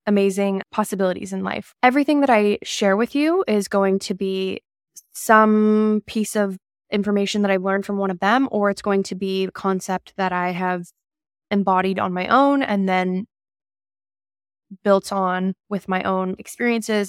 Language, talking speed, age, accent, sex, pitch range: English, 165 wpm, 10-29, American, female, 190-220 Hz